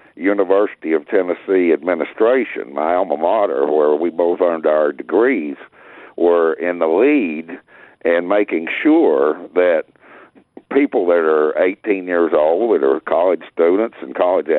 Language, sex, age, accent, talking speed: English, male, 60-79, American, 135 wpm